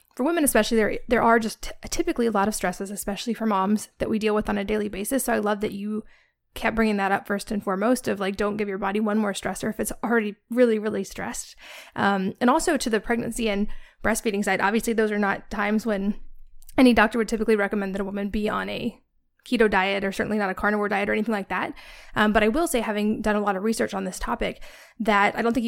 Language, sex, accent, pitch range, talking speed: English, female, American, 205-235 Hz, 250 wpm